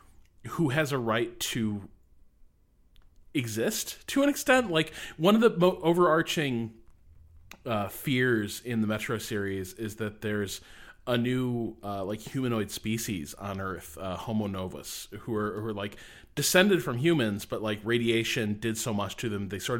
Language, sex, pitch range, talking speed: English, male, 100-125 Hz, 160 wpm